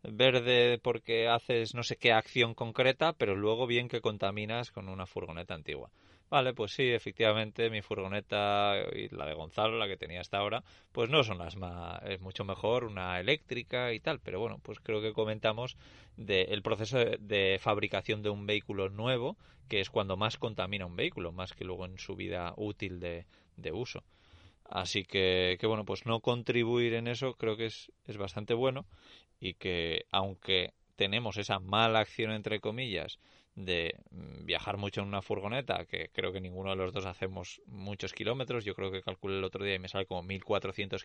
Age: 20-39